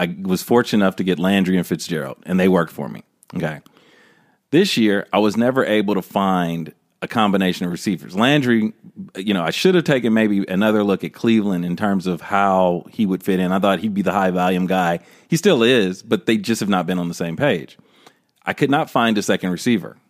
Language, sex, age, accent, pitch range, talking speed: English, male, 40-59, American, 95-120 Hz, 225 wpm